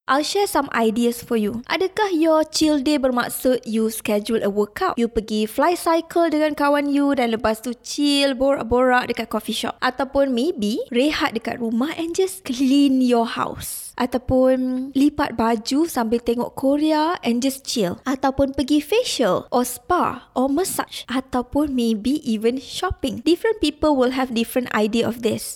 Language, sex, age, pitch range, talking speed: Malay, female, 20-39, 230-300 Hz, 160 wpm